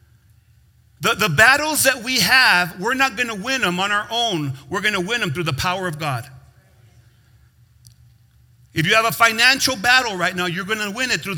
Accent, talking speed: American, 205 wpm